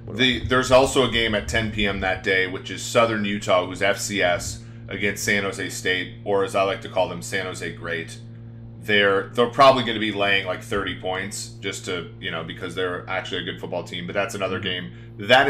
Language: English